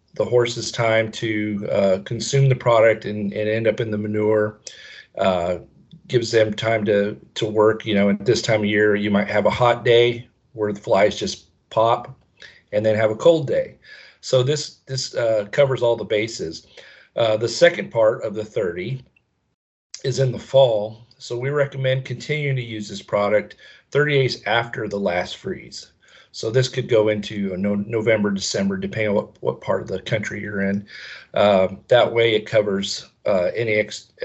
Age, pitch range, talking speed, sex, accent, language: 40-59, 105-130 Hz, 180 wpm, male, American, English